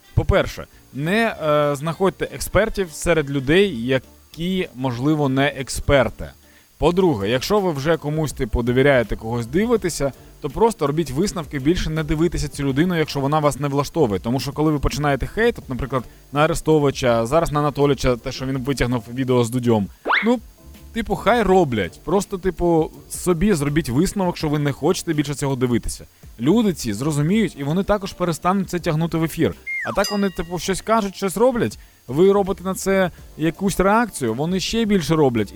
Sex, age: male, 20-39